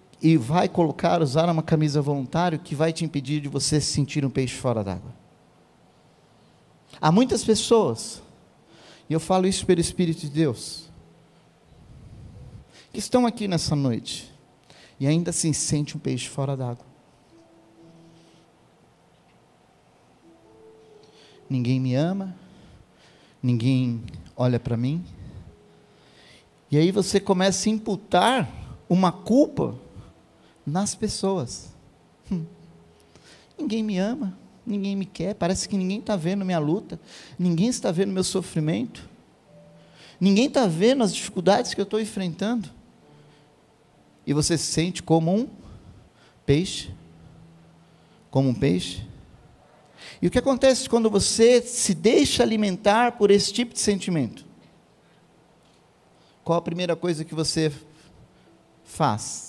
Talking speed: 120 wpm